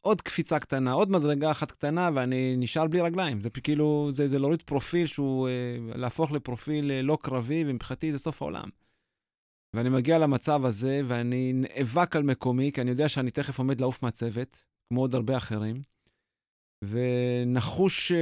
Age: 30-49